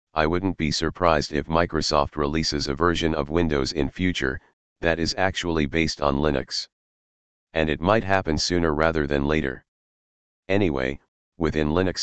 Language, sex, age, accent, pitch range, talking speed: English, male, 40-59, American, 75-90 Hz, 150 wpm